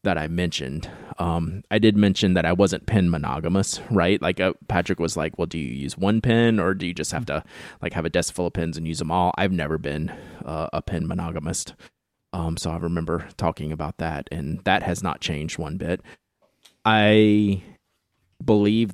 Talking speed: 205 wpm